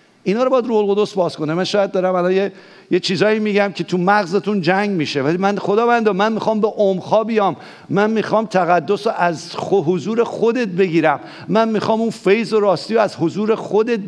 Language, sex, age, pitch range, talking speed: English, male, 50-69, 165-215 Hz, 205 wpm